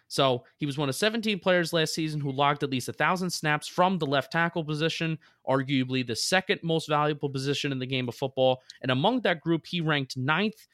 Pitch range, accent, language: 145-185 Hz, American, English